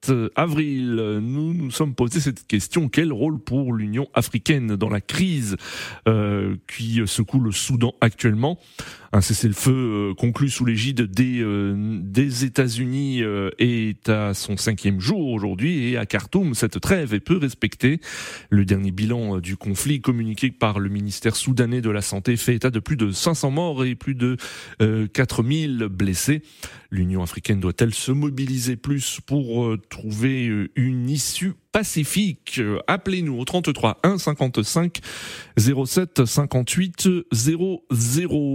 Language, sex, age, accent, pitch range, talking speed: French, male, 30-49, French, 110-145 Hz, 145 wpm